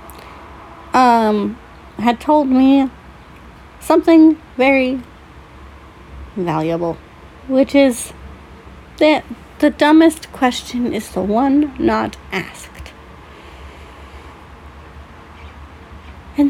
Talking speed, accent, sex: 70 wpm, American, female